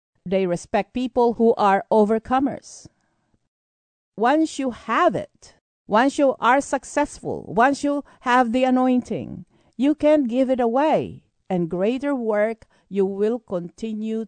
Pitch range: 170-240 Hz